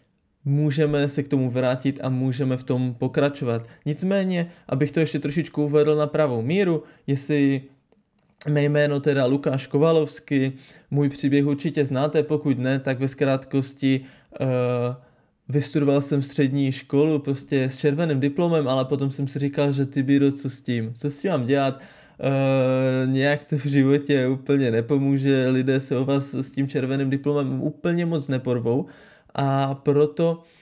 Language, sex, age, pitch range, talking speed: Czech, male, 20-39, 130-150 Hz, 150 wpm